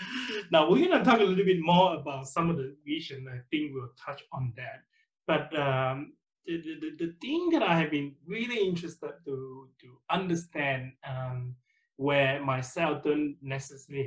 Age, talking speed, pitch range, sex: 20-39, 165 wpm, 135-195 Hz, male